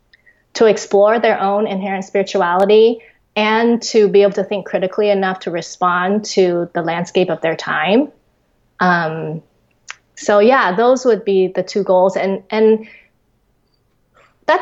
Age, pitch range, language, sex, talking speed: 20-39, 175-210 Hz, English, female, 140 wpm